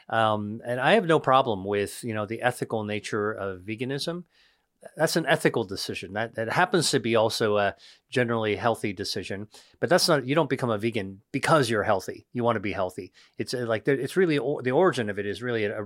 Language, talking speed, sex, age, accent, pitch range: English, 205 wpm, male, 40-59, American, 105-140 Hz